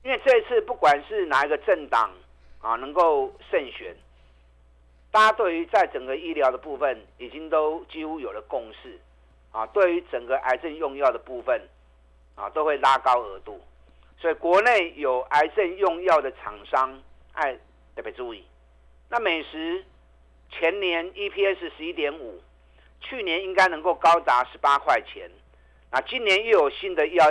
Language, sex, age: Chinese, male, 50-69